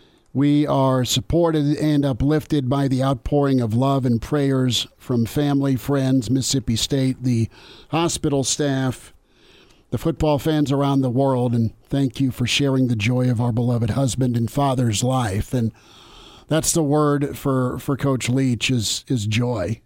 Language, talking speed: English, 155 wpm